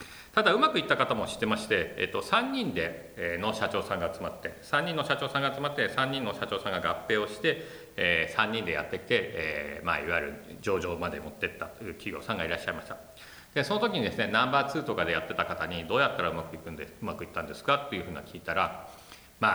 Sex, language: male, Japanese